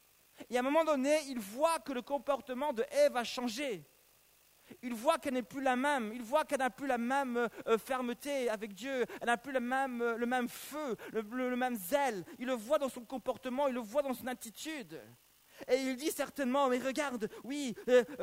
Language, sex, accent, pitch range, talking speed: French, male, French, 230-280 Hz, 210 wpm